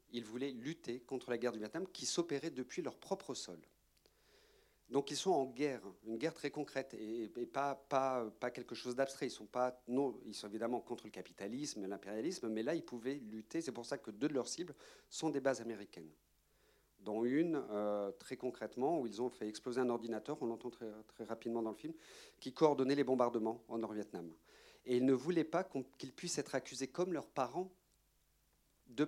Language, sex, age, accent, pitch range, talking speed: French, male, 40-59, French, 110-135 Hz, 195 wpm